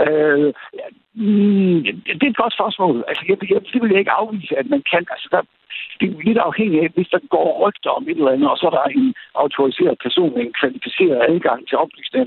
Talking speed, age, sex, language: 210 wpm, 60-79, male, Danish